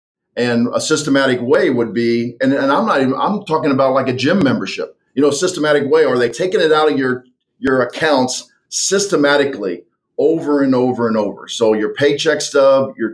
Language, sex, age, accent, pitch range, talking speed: English, male, 50-69, American, 120-150 Hz, 200 wpm